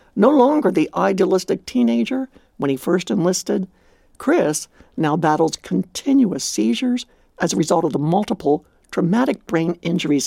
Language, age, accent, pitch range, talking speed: English, 60-79, American, 165-265 Hz, 135 wpm